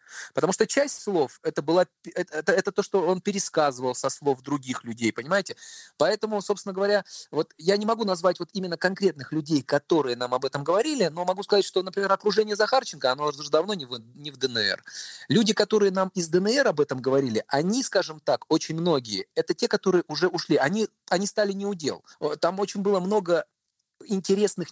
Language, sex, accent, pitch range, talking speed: Russian, male, native, 150-200 Hz, 180 wpm